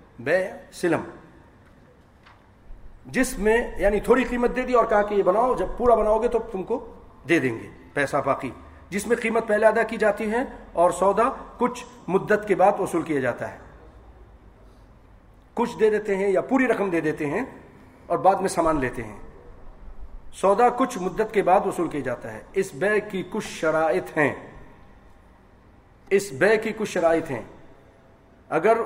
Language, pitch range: English, 170-220 Hz